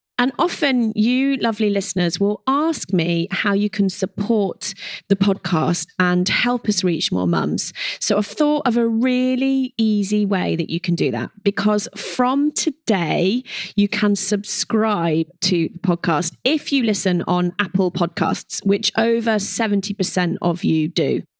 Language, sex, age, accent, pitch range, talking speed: English, female, 30-49, British, 175-225 Hz, 150 wpm